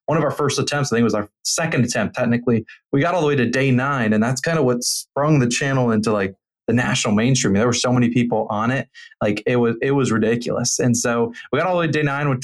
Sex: male